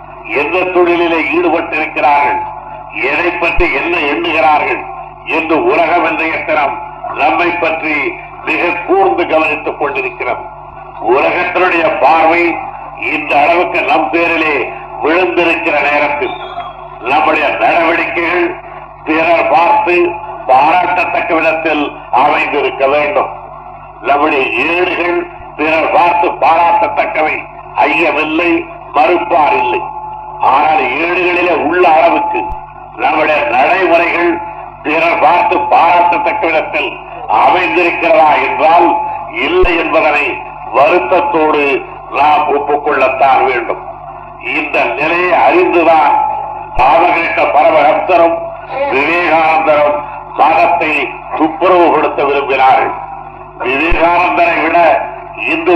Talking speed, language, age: 65 wpm, Tamil, 50-69